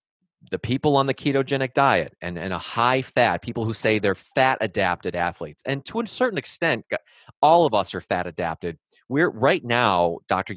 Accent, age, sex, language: American, 30-49, male, English